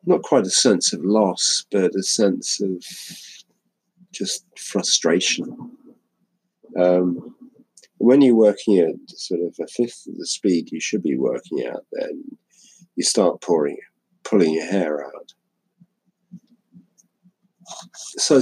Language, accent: English, British